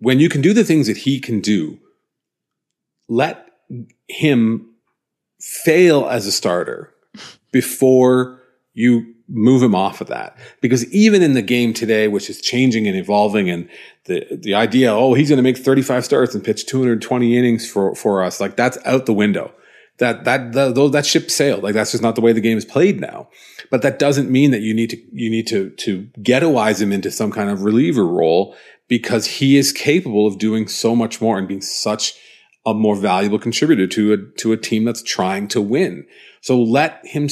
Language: English